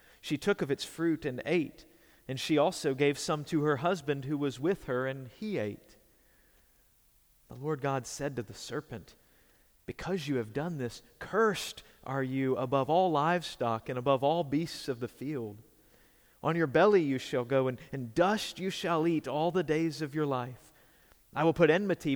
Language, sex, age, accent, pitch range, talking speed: English, male, 40-59, American, 125-170 Hz, 185 wpm